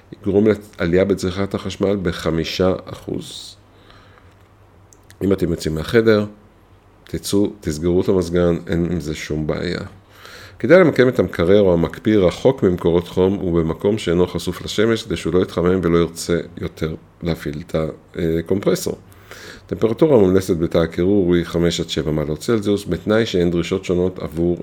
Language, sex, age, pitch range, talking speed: Hebrew, male, 50-69, 85-100 Hz, 135 wpm